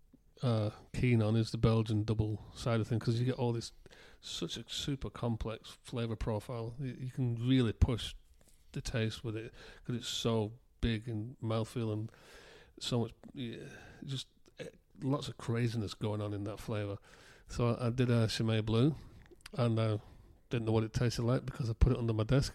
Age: 40-59